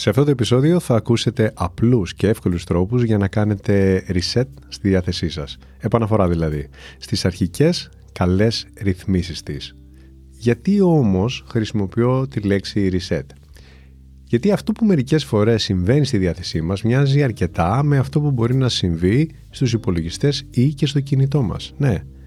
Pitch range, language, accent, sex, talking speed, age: 90-130 Hz, Greek, native, male, 150 wpm, 30-49